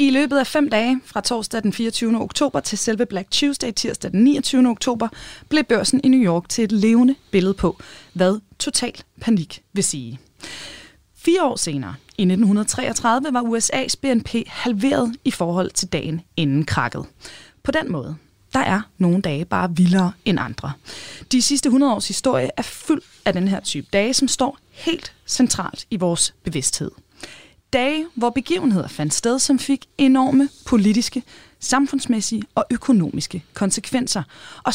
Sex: female